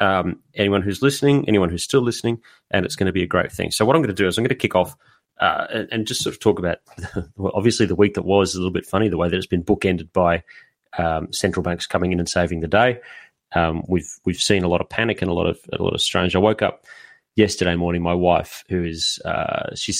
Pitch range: 85-105 Hz